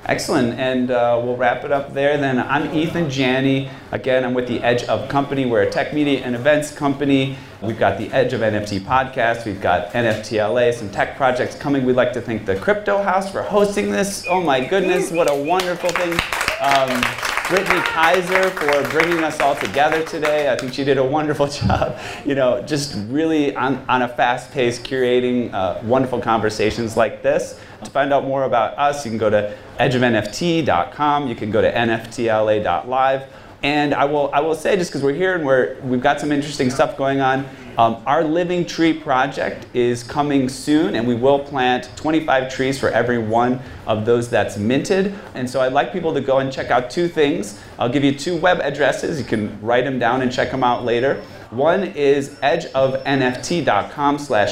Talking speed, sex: 195 wpm, male